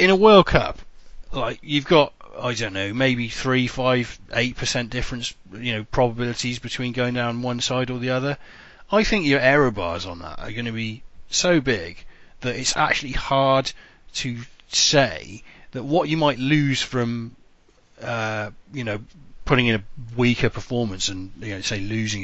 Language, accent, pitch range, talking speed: English, British, 105-130 Hz, 175 wpm